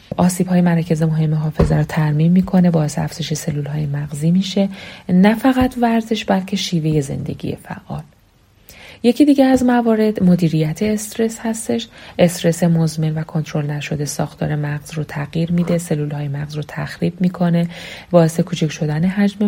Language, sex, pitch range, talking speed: Persian, female, 155-190 Hz, 145 wpm